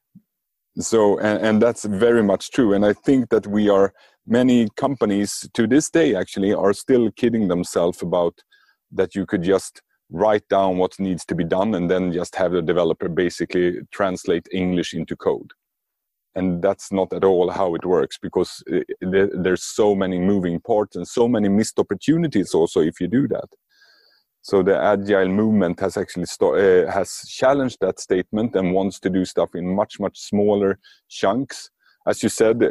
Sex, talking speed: male, 170 wpm